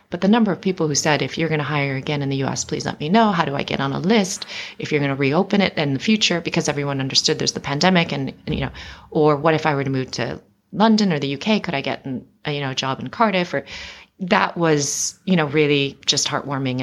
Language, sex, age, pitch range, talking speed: English, female, 30-49, 140-170 Hz, 275 wpm